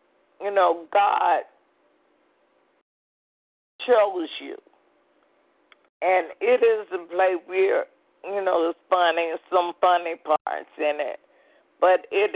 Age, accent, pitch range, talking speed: 50-69, American, 165-210 Hz, 105 wpm